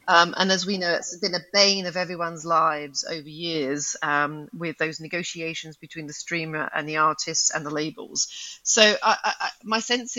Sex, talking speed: female, 195 wpm